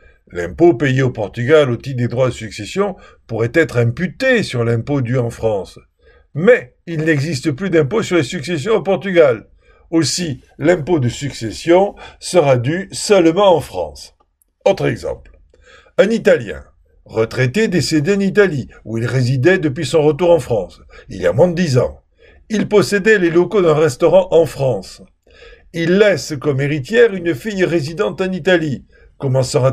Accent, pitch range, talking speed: French, 125-180 Hz, 160 wpm